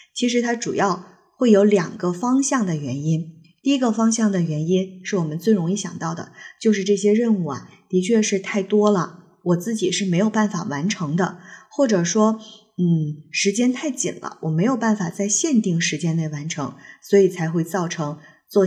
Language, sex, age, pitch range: Chinese, female, 20-39, 175-230 Hz